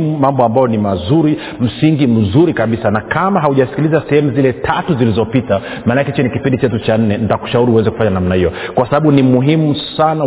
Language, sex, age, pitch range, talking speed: Swahili, male, 40-59, 115-145 Hz, 180 wpm